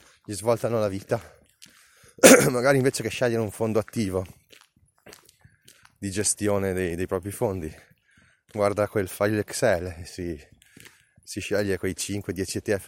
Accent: native